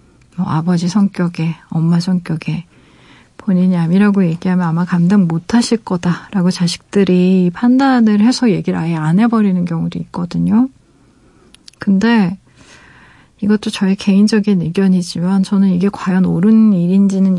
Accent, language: native, Korean